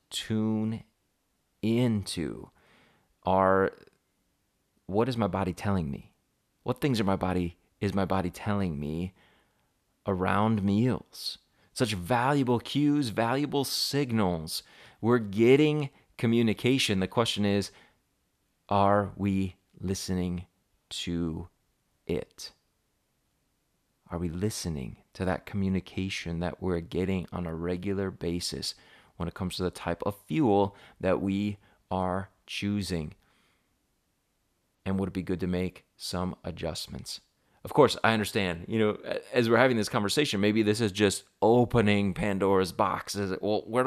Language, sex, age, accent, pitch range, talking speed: English, male, 30-49, American, 95-115 Hz, 125 wpm